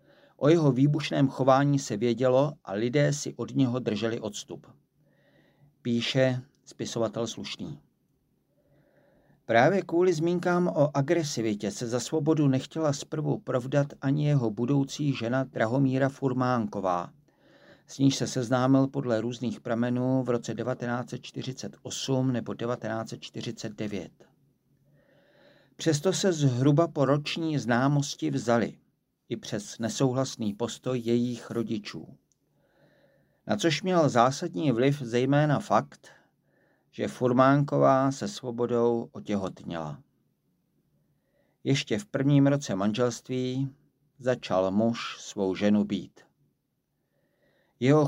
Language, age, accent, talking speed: Czech, 50-69, native, 100 wpm